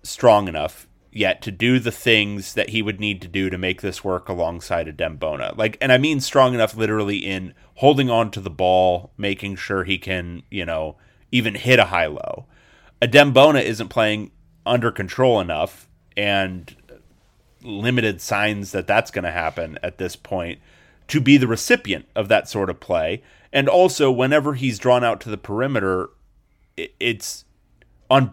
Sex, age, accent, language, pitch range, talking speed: male, 30-49, American, English, 95-130 Hz, 170 wpm